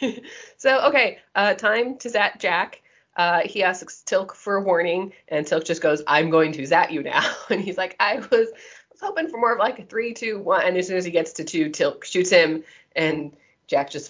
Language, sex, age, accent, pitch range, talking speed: English, female, 20-39, American, 160-225 Hz, 225 wpm